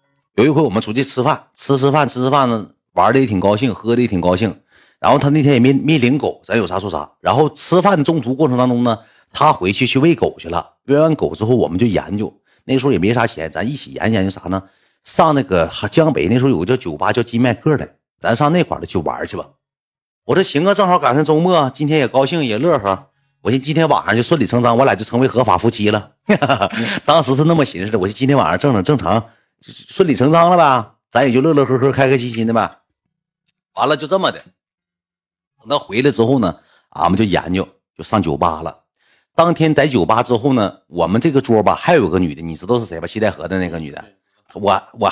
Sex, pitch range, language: male, 105-150 Hz, Chinese